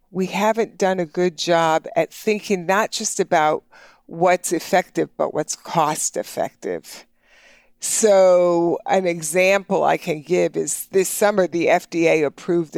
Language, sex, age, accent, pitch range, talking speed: English, female, 50-69, American, 170-210 Hz, 135 wpm